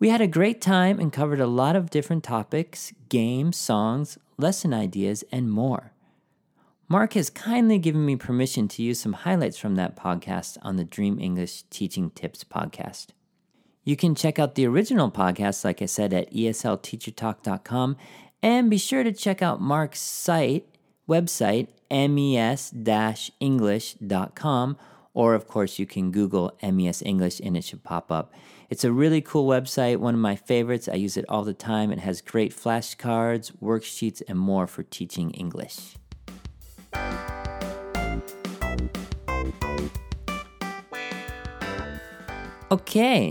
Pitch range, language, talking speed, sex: 105-160 Hz, English, 135 wpm, male